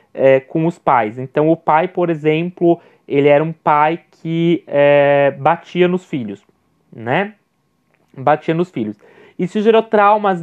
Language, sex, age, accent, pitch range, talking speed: Portuguese, male, 20-39, Brazilian, 165-210 Hz, 130 wpm